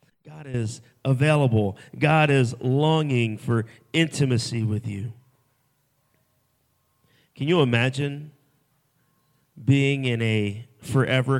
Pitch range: 115-135 Hz